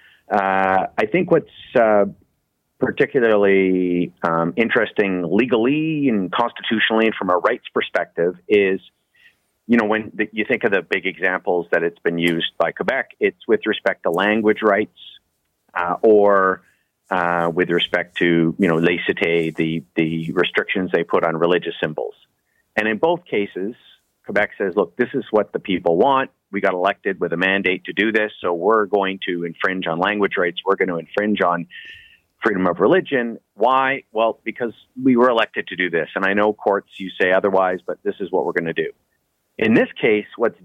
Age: 40-59